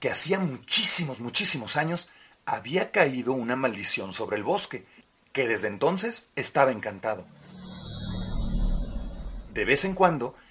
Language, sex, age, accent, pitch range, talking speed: Spanish, male, 40-59, Mexican, 125-185 Hz, 120 wpm